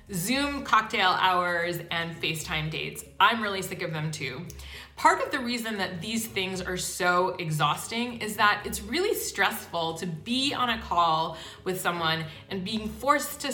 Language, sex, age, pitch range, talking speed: English, female, 20-39, 170-235 Hz, 170 wpm